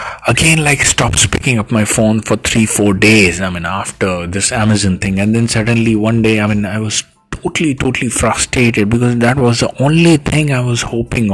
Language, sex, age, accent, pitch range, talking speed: English, male, 30-49, Indian, 105-120 Hz, 200 wpm